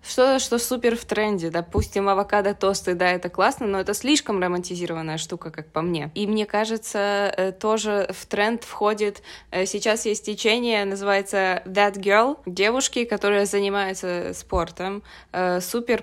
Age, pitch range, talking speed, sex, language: 20-39, 185-215 Hz, 135 wpm, female, Russian